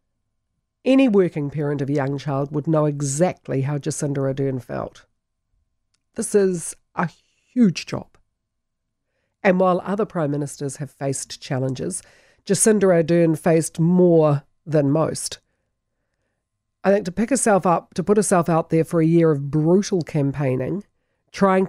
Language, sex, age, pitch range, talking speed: English, female, 50-69, 145-185 Hz, 140 wpm